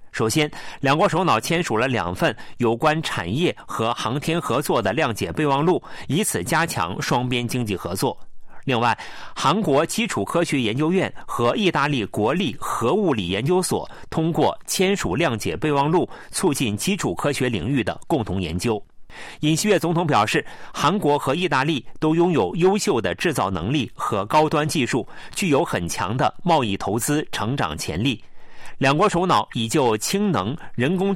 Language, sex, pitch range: Chinese, male, 115-170 Hz